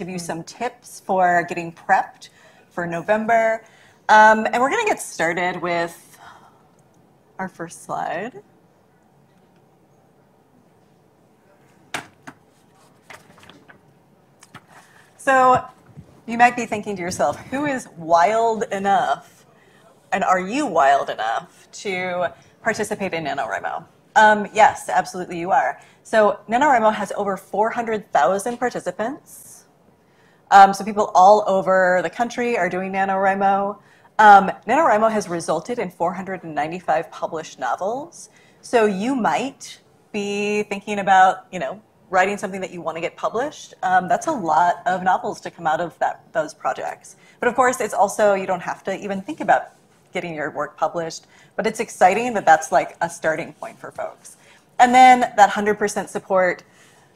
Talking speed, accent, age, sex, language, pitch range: 135 wpm, American, 30-49, female, English, 180-225 Hz